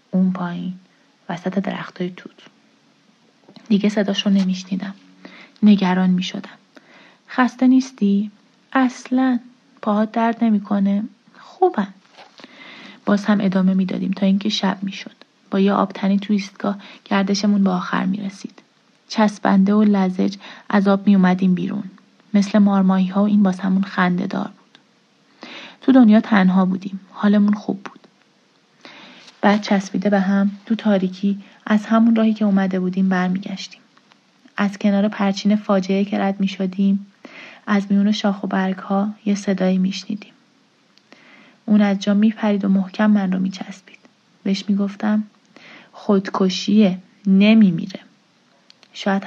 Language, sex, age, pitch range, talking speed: Persian, female, 30-49, 195-220 Hz, 135 wpm